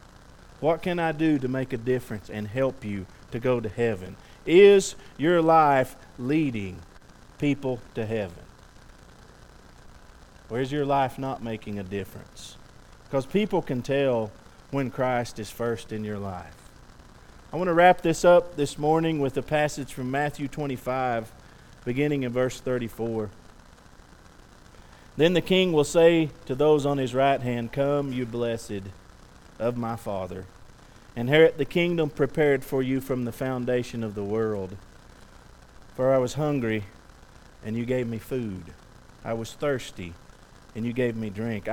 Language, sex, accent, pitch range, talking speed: English, male, American, 105-140 Hz, 150 wpm